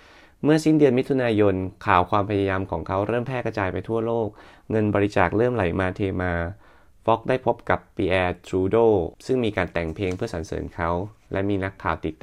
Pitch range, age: 90-110 Hz, 20-39